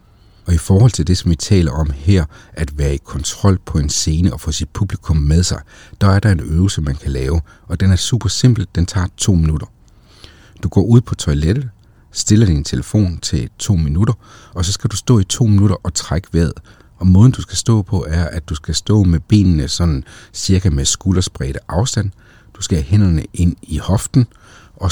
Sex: male